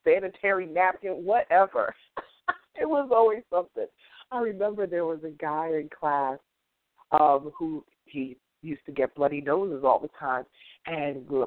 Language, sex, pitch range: English, female, 150-210 Hz